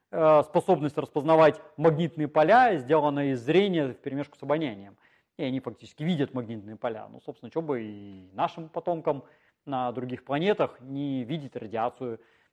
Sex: male